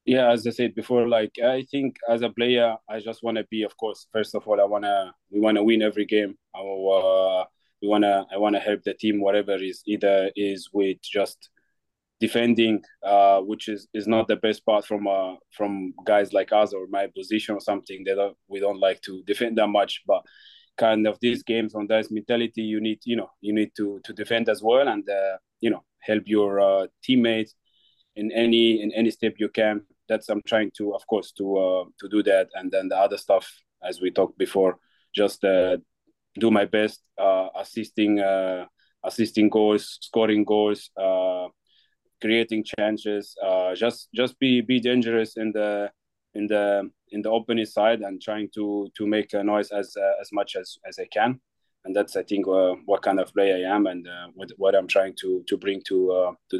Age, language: 20-39, English